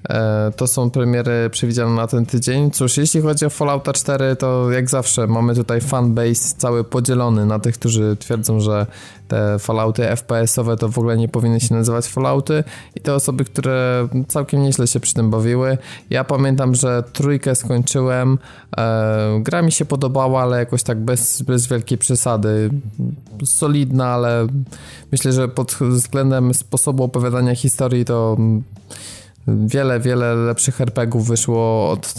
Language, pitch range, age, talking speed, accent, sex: Polish, 115-130 Hz, 20-39, 145 wpm, native, male